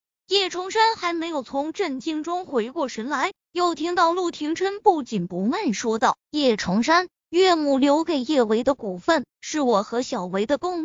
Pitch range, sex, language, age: 245-355 Hz, female, Chinese, 20-39